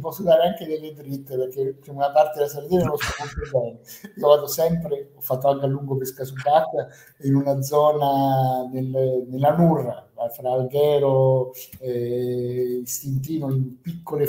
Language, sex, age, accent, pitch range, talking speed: Italian, male, 50-69, native, 130-150 Hz, 150 wpm